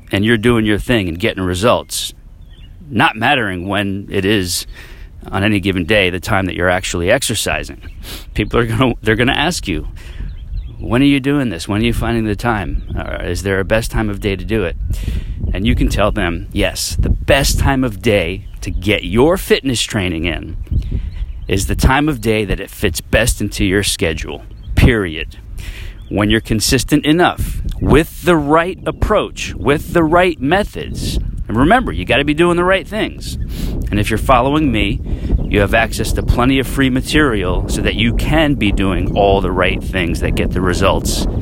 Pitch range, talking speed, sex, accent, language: 90-115 Hz, 190 wpm, male, American, English